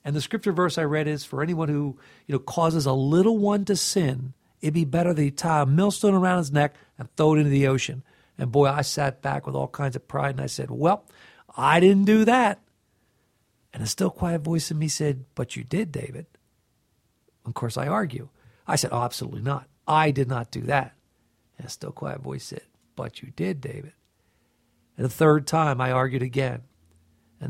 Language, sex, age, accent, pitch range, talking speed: English, male, 50-69, American, 130-165 Hz, 210 wpm